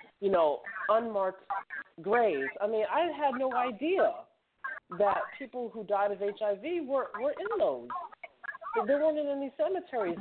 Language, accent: English, American